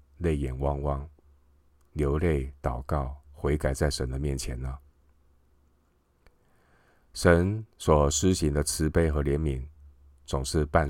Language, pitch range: Chinese, 70-75 Hz